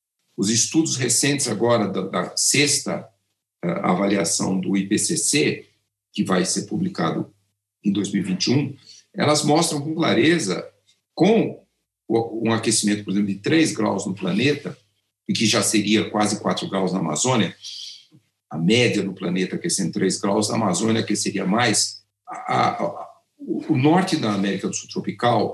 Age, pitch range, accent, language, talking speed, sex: 60-79, 105-150 Hz, Brazilian, Portuguese, 145 wpm, male